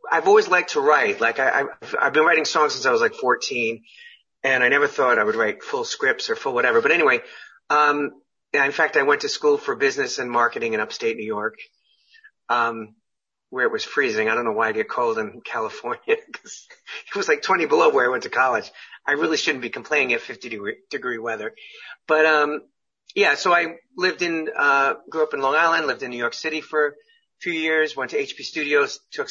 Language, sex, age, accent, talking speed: English, male, 40-59, American, 215 wpm